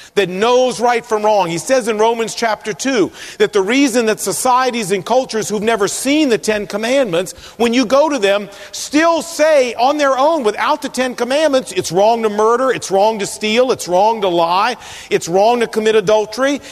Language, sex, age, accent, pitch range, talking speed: English, male, 40-59, American, 210-280 Hz, 195 wpm